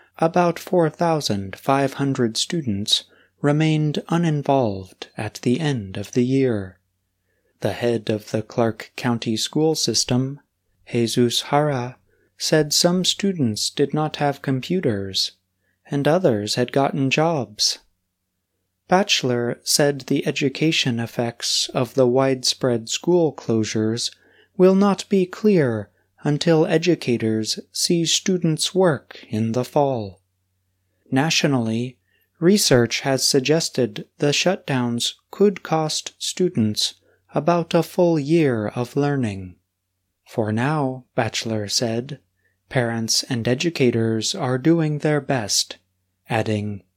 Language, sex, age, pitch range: Chinese, male, 30-49, 105-155 Hz